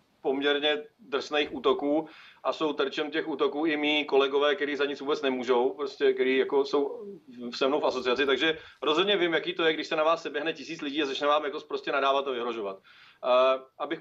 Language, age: Czech, 30-49